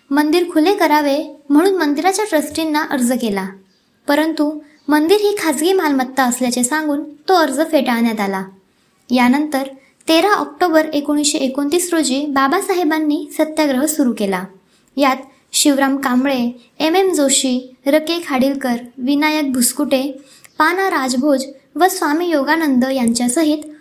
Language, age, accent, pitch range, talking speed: Marathi, 20-39, native, 265-320 Hz, 110 wpm